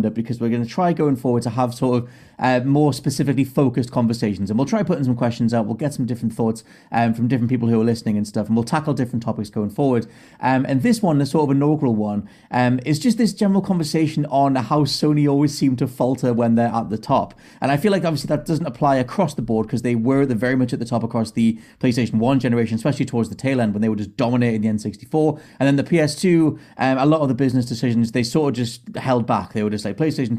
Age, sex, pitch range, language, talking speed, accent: 30-49, male, 115-140 Hz, English, 255 wpm, British